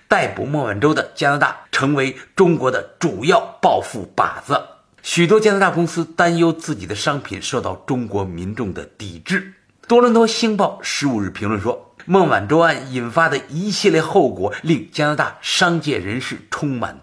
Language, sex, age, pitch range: Chinese, male, 50-69, 130-190 Hz